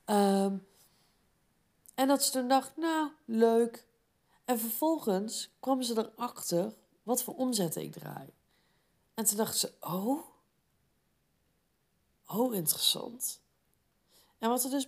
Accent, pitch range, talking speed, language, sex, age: Dutch, 200-255 Hz, 115 wpm, Dutch, female, 40-59